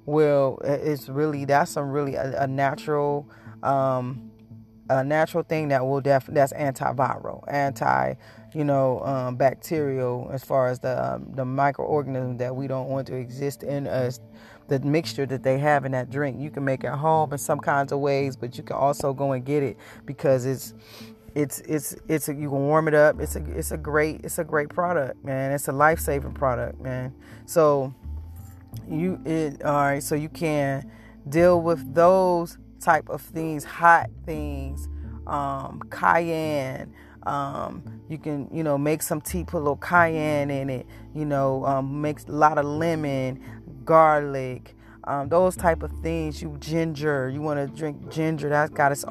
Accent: American